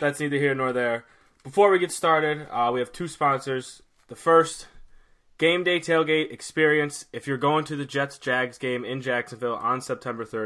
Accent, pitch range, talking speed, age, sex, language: American, 115-140 Hz, 180 wpm, 20-39, male, English